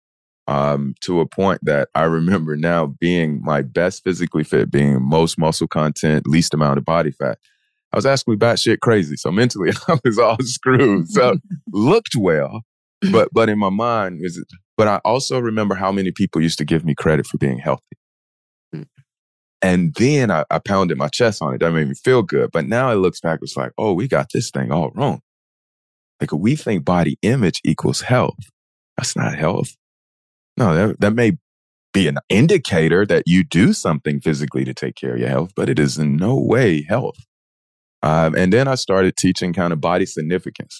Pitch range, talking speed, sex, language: 75-95 Hz, 195 wpm, male, English